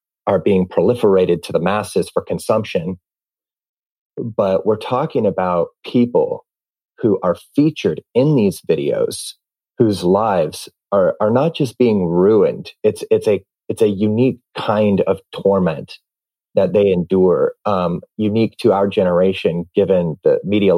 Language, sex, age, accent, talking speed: English, male, 30-49, American, 130 wpm